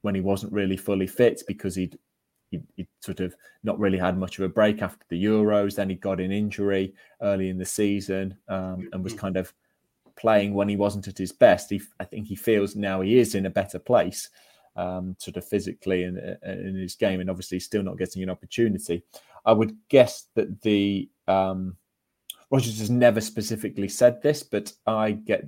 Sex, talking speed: male, 205 wpm